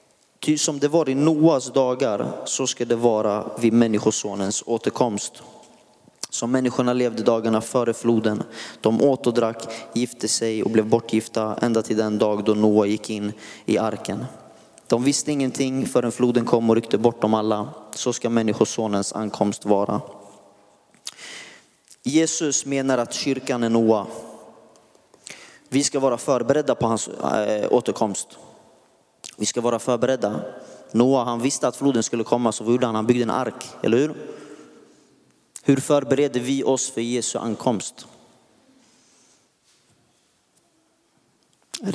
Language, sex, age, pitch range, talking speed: Swedish, male, 30-49, 110-135 Hz, 135 wpm